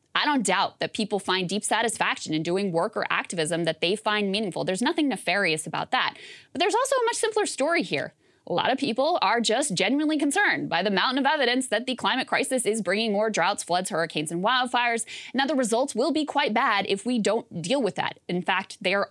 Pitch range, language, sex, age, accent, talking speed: 190-275 Hz, English, female, 20-39, American, 230 wpm